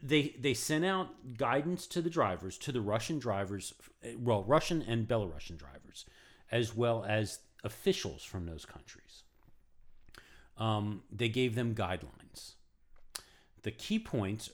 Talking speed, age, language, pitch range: 130 wpm, 40-59, English, 100-140 Hz